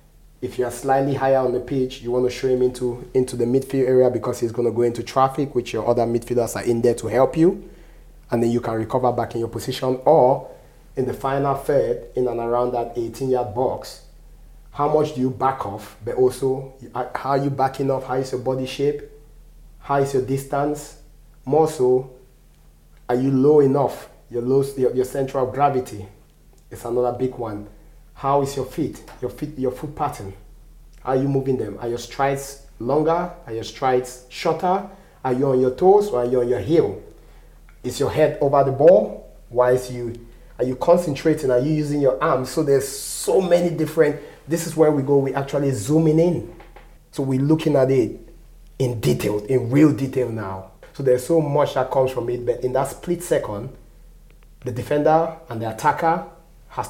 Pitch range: 125-145 Hz